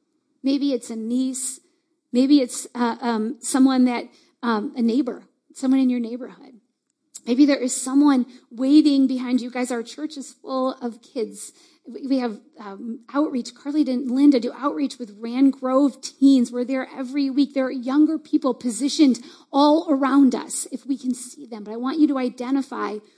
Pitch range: 250-305 Hz